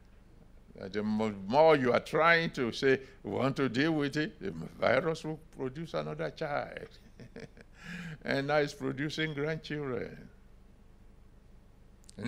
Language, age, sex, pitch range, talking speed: English, 60-79, male, 110-155 Hz, 125 wpm